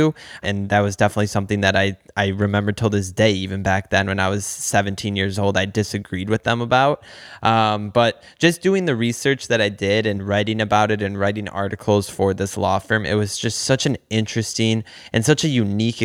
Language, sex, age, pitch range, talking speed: English, male, 20-39, 100-125 Hz, 210 wpm